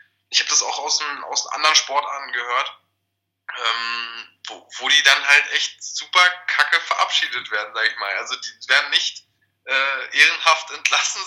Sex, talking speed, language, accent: male, 165 wpm, German, German